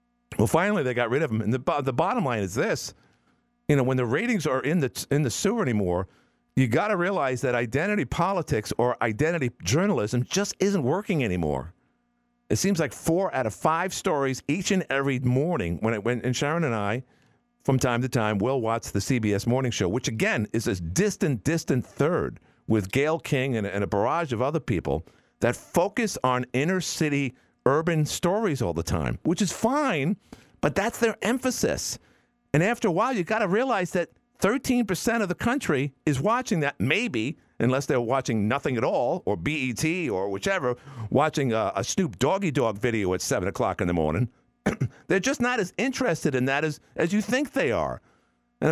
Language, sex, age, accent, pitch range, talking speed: English, male, 50-69, American, 110-185 Hz, 195 wpm